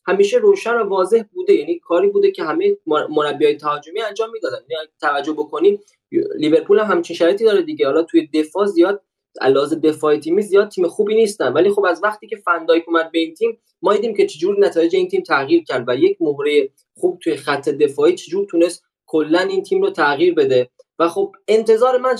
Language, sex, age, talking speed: Persian, male, 20-39, 195 wpm